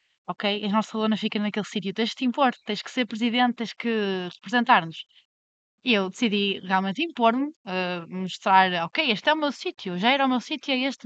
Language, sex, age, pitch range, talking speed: Portuguese, female, 20-39, 185-245 Hz, 210 wpm